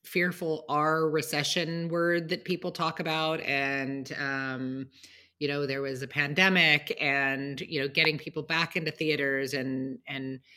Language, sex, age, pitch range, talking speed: English, female, 30-49, 140-165 Hz, 150 wpm